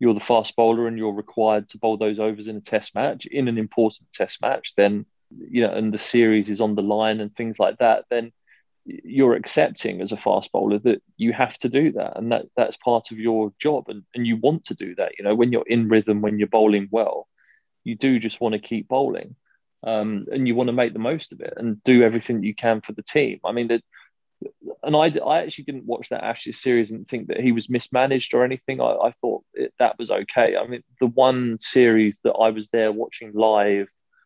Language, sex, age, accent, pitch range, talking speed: English, male, 20-39, British, 105-120 Hz, 235 wpm